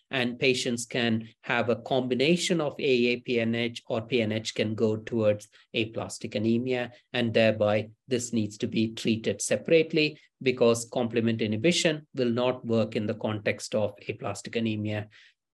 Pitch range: 115-170 Hz